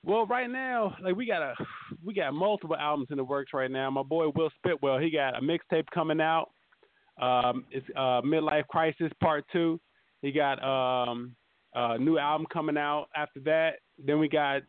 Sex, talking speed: male, 190 wpm